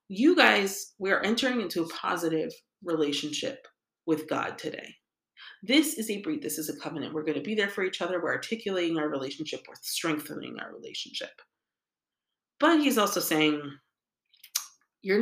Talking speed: 160 wpm